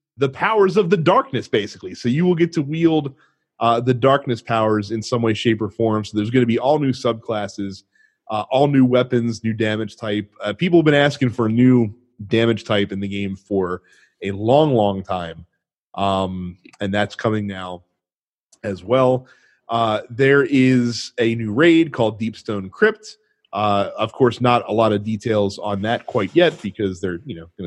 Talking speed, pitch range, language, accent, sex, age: 190 wpm, 110-150 Hz, English, American, male, 30-49